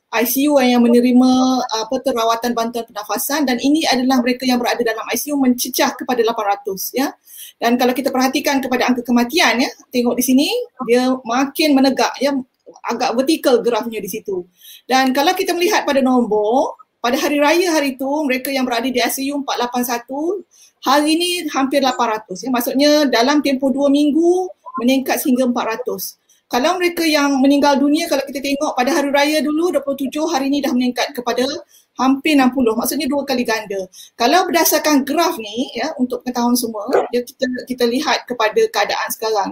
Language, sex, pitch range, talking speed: Malay, female, 245-295 Hz, 160 wpm